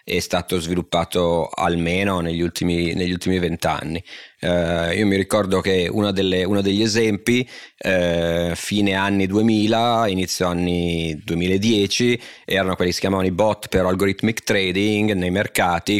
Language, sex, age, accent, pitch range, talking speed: Italian, male, 30-49, native, 90-105 Hz, 130 wpm